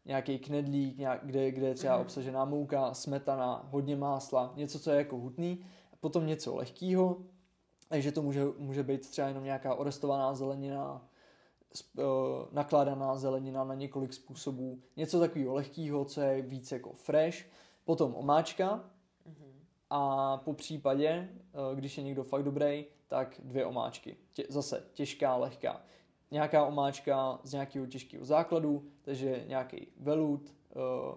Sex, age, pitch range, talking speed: male, 20-39, 135-150 Hz, 130 wpm